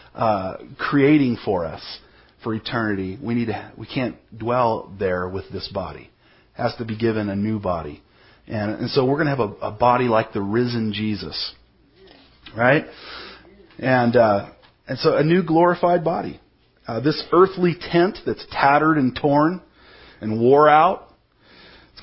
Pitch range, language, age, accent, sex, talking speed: 105-150 Hz, English, 40-59, American, male, 160 wpm